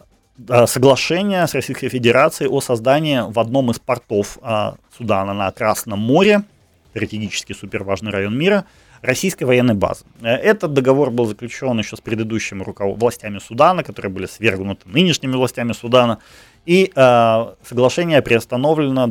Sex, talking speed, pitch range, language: male, 130 wpm, 105-140 Hz, Ukrainian